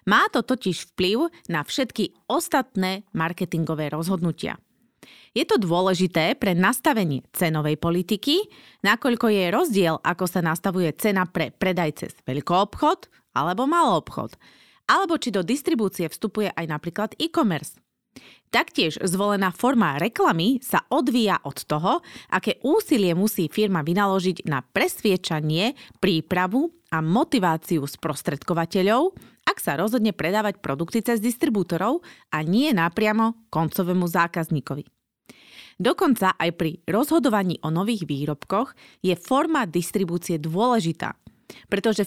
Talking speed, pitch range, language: 115 wpm, 170-235 Hz, Slovak